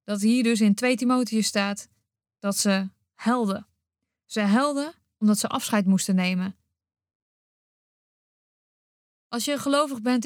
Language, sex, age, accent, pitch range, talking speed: Dutch, female, 20-39, Dutch, 200-250 Hz, 125 wpm